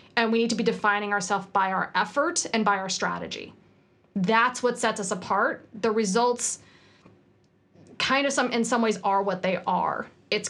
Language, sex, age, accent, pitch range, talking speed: English, female, 30-49, American, 200-245 Hz, 185 wpm